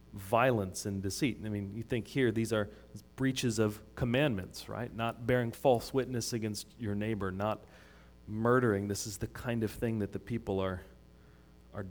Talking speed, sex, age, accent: 170 wpm, male, 30-49, American